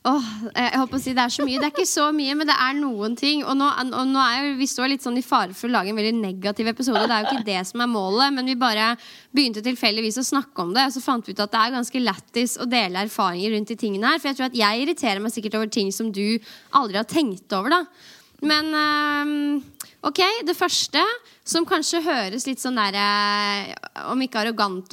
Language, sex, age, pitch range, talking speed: English, female, 10-29, 220-290 Hz, 250 wpm